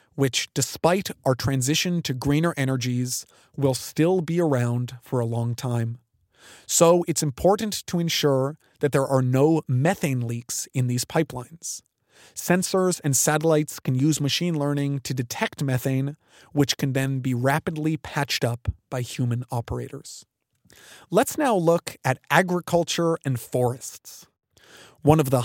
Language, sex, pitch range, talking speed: English, male, 130-170 Hz, 140 wpm